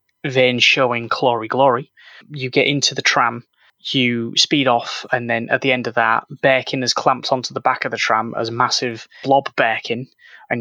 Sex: male